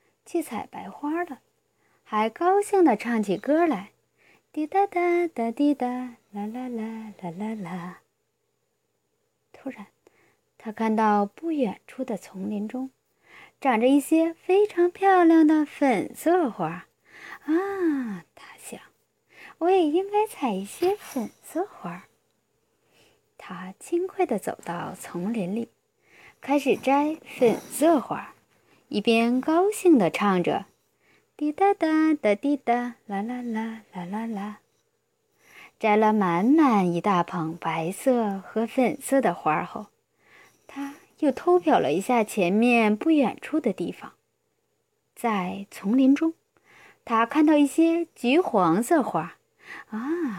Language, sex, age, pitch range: Chinese, female, 20-39, 215-335 Hz